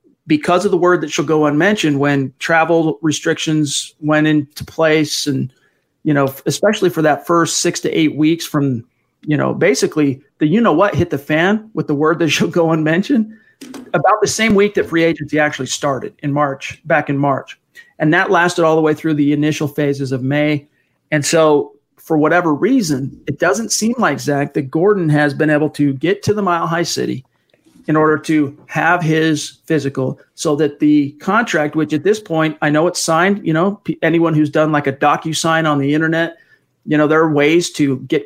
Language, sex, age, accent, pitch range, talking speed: English, male, 40-59, American, 150-170 Hz, 200 wpm